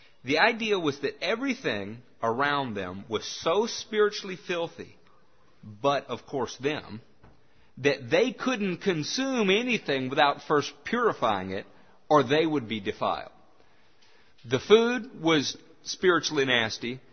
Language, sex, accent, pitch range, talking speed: English, male, American, 130-175 Hz, 120 wpm